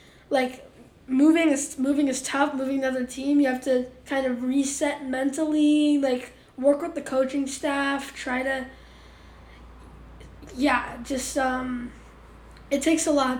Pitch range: 250-285 Hz